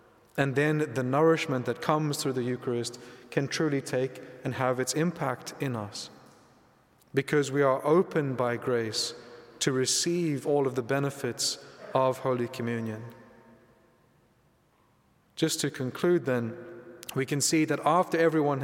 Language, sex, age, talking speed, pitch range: English, male, 30-49, 140 wpm, 130-150 Hz